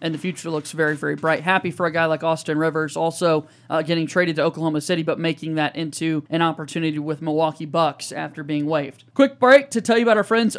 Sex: male